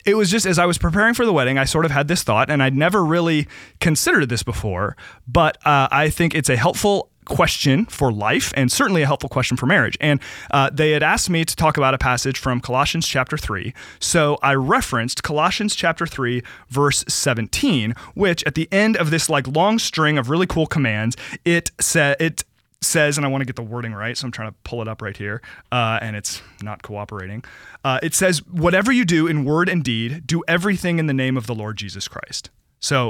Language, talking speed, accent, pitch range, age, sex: English, 225 wpm, American, 120-165 Hz, 30-49, male